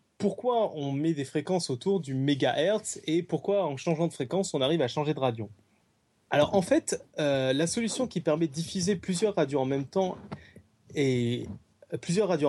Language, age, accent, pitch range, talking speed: French, 20-39, French, 130-185 Hz, 185 wpm